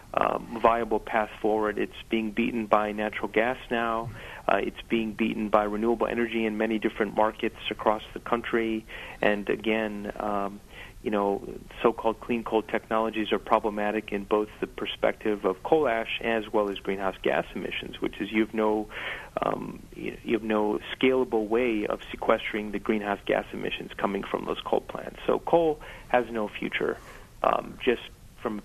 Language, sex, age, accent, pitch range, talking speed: English, male, 40-59, American, 105-115 Hz, 170 wpm